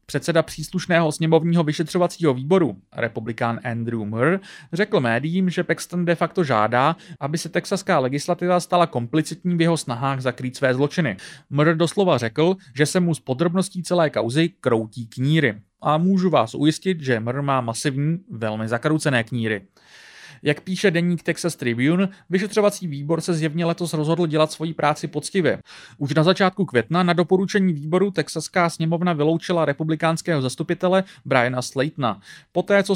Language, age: English, 30-49